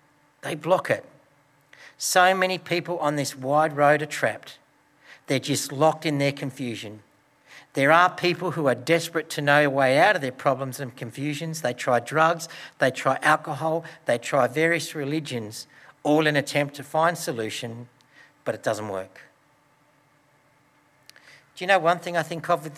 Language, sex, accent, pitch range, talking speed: English, male, Australian, 140-160 Hz, 165 wpm